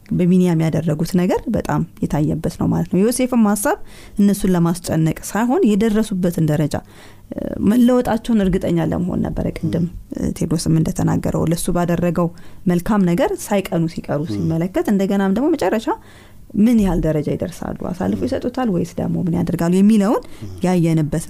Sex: female